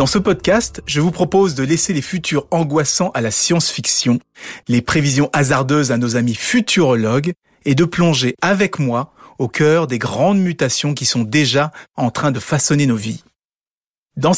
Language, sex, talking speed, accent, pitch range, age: French, male, 170 wpm, French, 125-180 Hz, 30-49